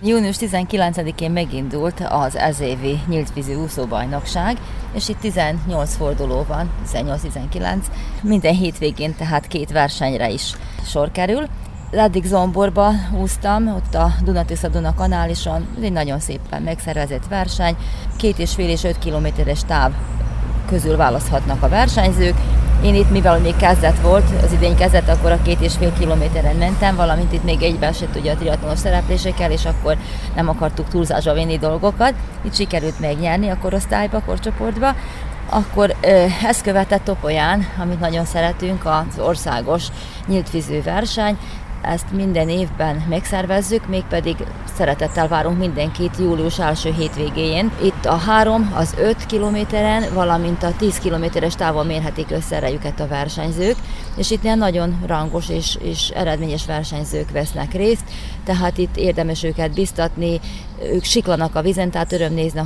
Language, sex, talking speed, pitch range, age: Hungarian, female, 140 wpm, 155-190 Hz, 30-49